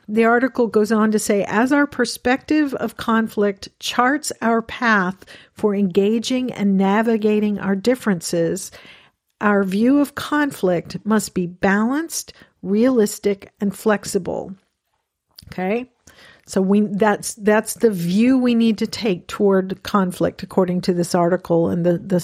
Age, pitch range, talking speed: 50-69, 195-235 Hz, 135 wpm